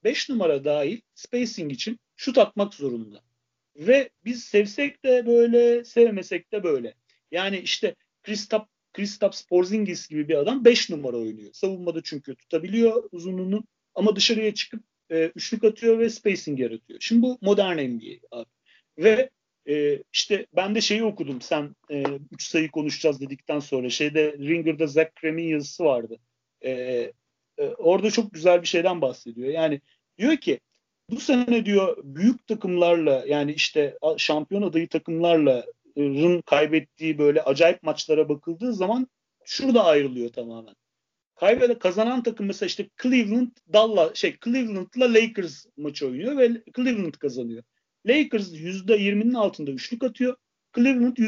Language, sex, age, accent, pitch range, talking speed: Turkish, male, 40-59, native, 150-235 Hz, 135 wpm